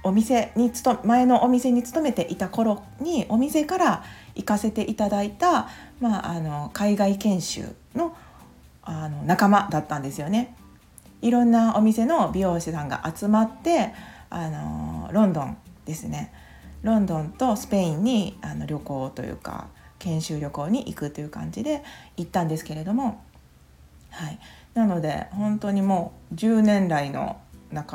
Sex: female